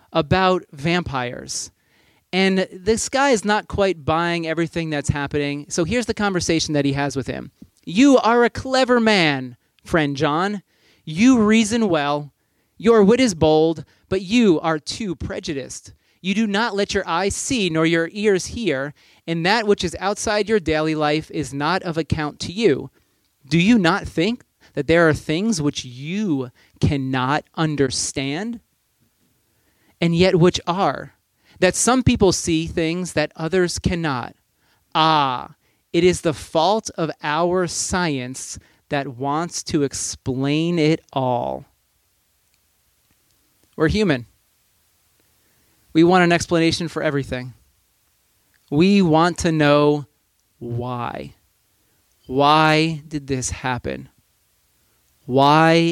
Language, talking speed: English, 130 wpm